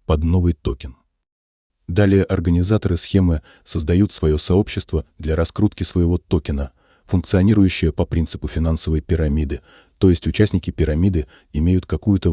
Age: 30-49